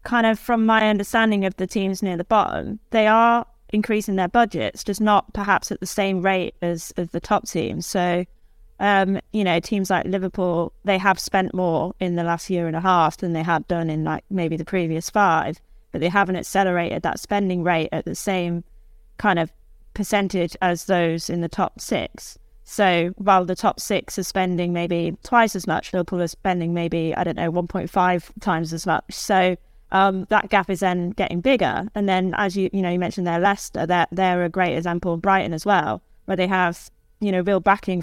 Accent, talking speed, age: British, 210 wpm, 20-39